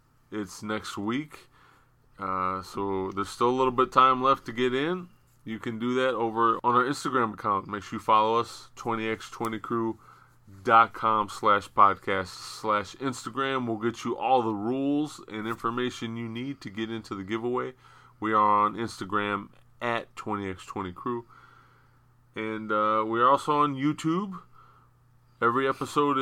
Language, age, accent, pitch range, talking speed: English, 30-49, American, 105-125 Hz, 145 wpm